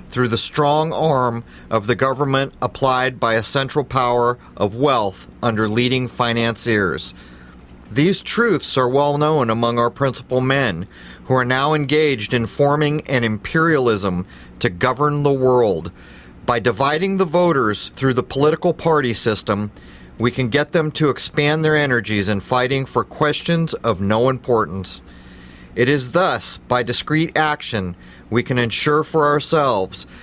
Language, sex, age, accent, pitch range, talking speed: English, male, 40-59, American, 110-145 Hz, 145 wpm